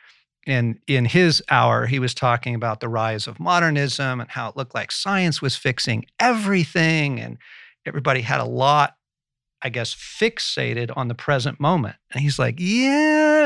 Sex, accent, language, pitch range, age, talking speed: male, American, English, 120-155 Hz, 50-69, 165 wpm